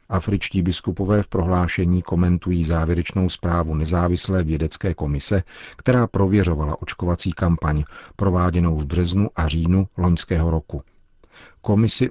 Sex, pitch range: male, 85-95 Hz